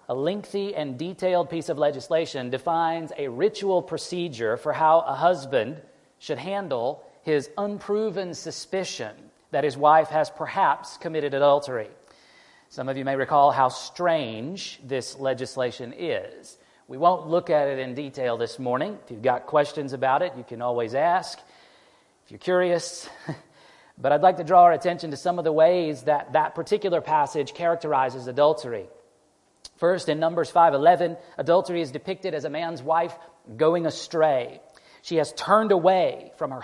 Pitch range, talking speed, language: 145-175 Hz, 160 wpm, English